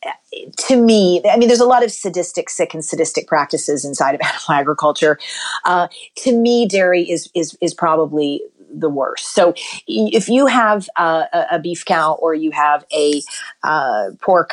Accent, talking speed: American, 170 wpm